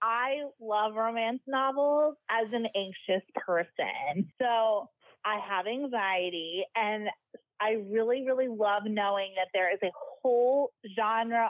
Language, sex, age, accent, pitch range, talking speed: English, female, 20-39, American, 200-260 Hz, 125 wpm